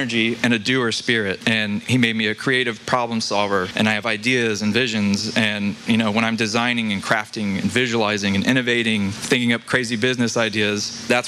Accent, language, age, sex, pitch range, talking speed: American, English, 20-39, male, 110-130 Hz, 195 wpm